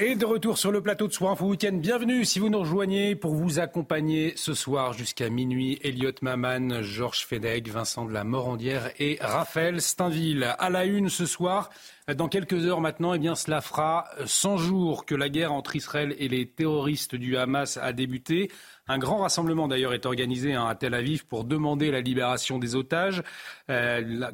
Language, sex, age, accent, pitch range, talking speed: French, male, 40-59, French, 135-175 Hz, 185 wpm